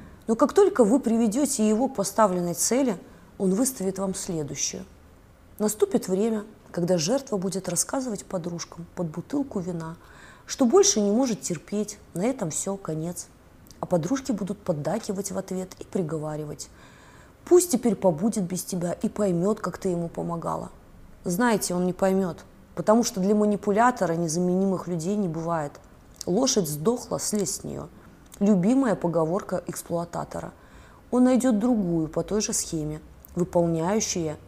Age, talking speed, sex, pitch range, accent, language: 20-39, 135 wpm, female, 170-225 Hz, native, Russian